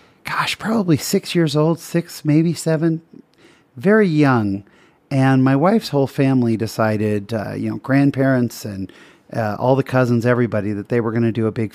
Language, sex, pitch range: English, male, 115-145 Hz